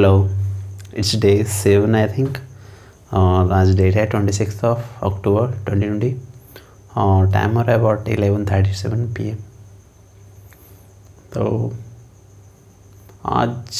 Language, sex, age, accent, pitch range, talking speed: Hindi, male, 30-49, native, 100-110 Hz, 95 wpm